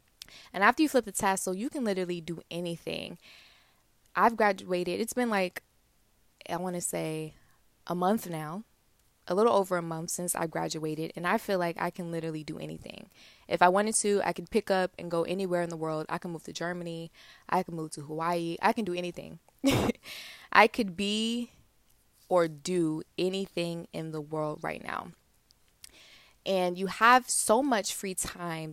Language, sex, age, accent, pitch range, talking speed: English, female, 20-39, American, 170-205 Hz, 180 wpm